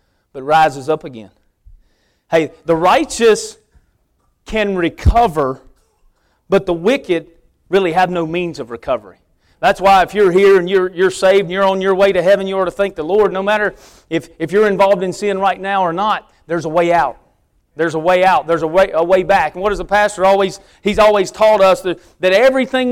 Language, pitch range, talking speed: English, 165-210 Hz, 205 wpm